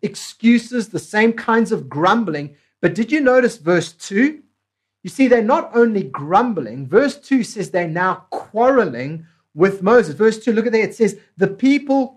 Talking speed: 175 wpm